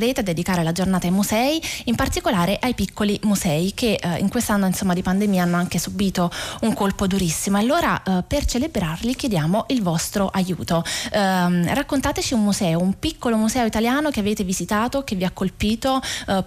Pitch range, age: 180-230 Hz, 20-39